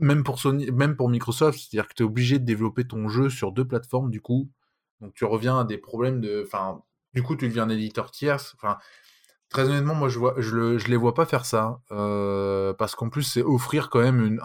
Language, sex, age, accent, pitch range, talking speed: French, male, 20-39, French, 110-140 Hz, 245 wpm